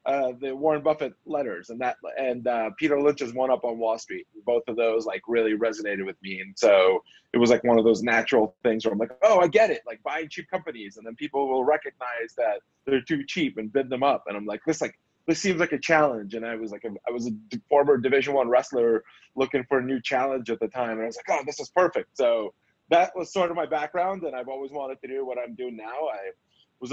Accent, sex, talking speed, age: American, male, 255 wpm, 20-39